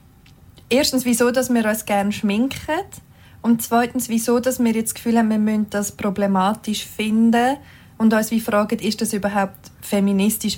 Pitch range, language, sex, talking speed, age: 205-245 Hz, German, female, 160 wpm, 20-39